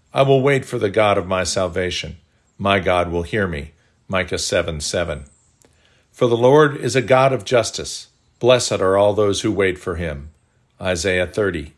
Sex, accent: male, American